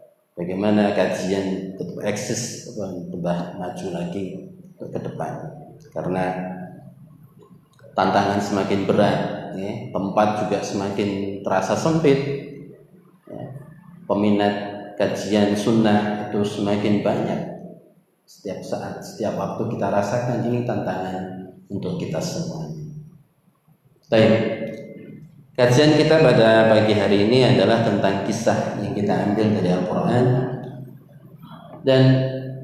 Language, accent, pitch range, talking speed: Indonesian, native, 105-150 Hz, 95 wpm